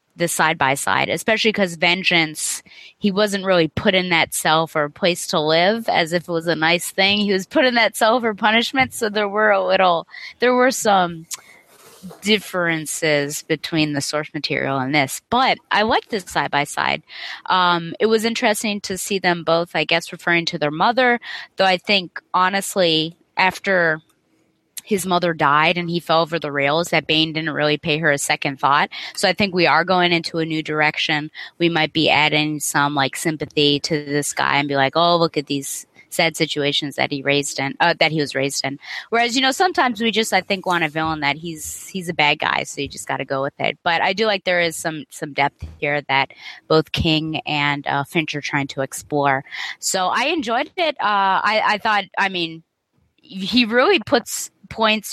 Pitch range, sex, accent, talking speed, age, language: 155-200 Hz, female, American, 205 wpm, 20-39, English